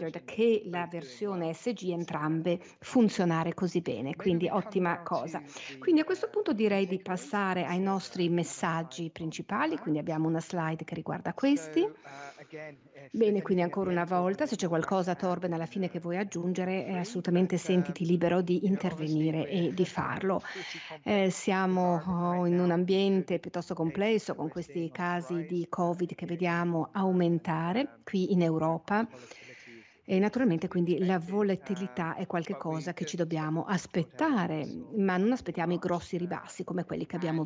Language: English